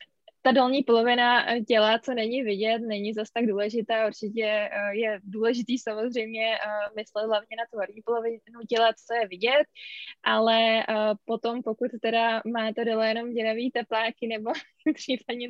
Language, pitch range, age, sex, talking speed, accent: Czech, 210-235 Hz, 20-39, female, 140 wpm, native